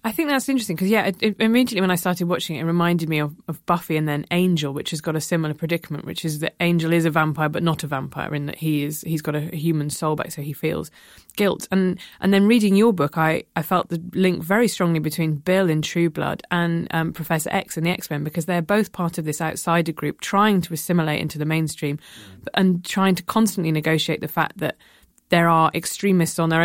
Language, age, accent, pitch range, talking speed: English, 20-39, British, 155-180 Hz, 240 wpm